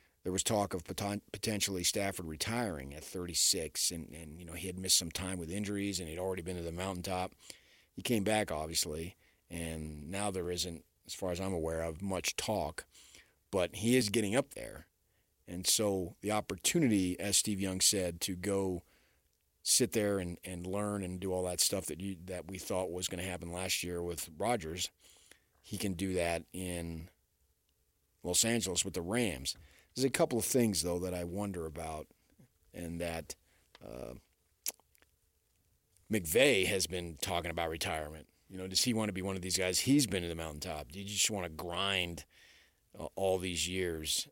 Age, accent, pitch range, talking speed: 40-59, American, 85-100 Hz, 185 wpm